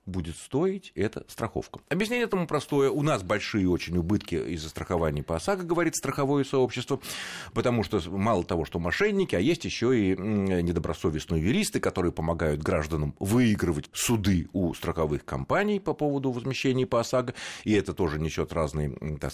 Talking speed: 155 wpm